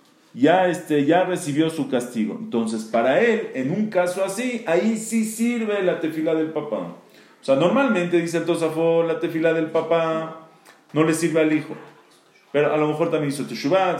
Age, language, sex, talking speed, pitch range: 40-59, English, male, 185 wpm, 140-180 Hz